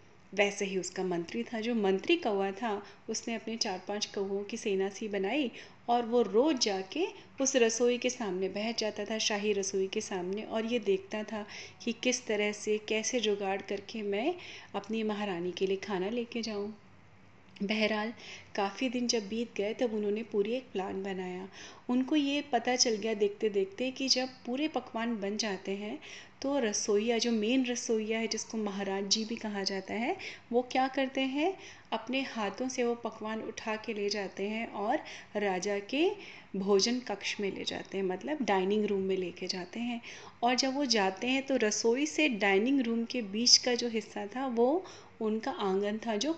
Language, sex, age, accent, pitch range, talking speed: Hindi, female, 30-49, native, 200-245 Hz, 185 wpm